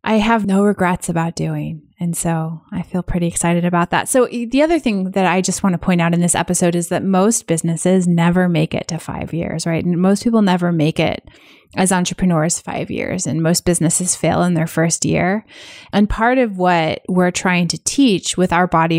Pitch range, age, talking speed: 170-205 Hz, 20-39, 215 wpm